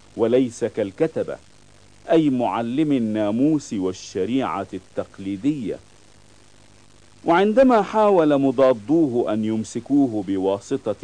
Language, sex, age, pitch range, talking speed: Italian, male, 50-69, 110-155 Hz, 70 wpm